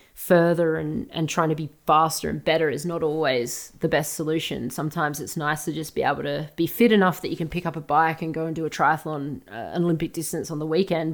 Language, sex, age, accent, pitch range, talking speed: English, female, 30-49, Australian, 160-195 Hz, 250 wpm